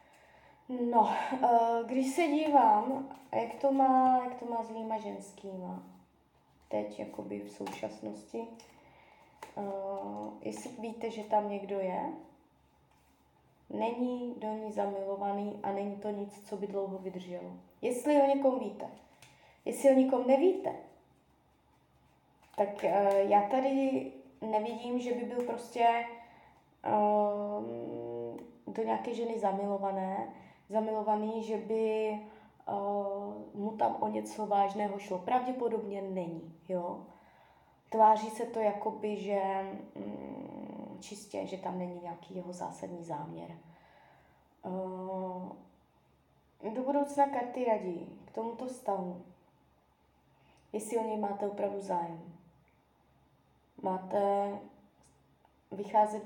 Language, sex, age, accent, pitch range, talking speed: Czech, female, 20-39, native, 175-225 Hz, 100 wpm